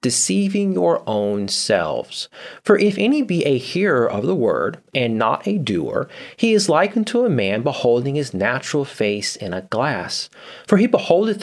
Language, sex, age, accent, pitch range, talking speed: English, male, 30-49, American, 120-195 Hz, 175 wpm